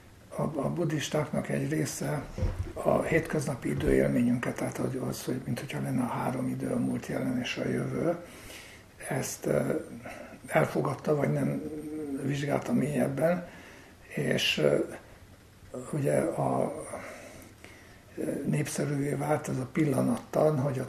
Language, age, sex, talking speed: Hungarian, 60-79, male, 110 wpm